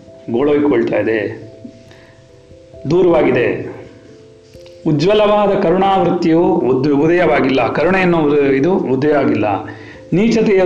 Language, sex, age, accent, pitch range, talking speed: Kannada, male, 40-59, native, 130-185 Hz, 60 wpm